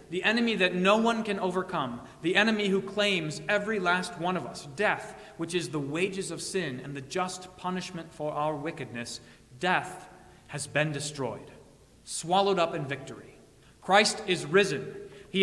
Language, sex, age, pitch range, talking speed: English, male, 30-49, 135-185 Hz, 165 wpm